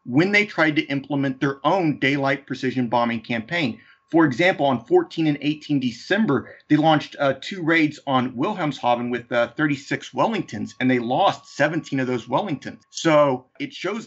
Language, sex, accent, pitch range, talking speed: English, male, American, 125-160 Hz, 165 wpm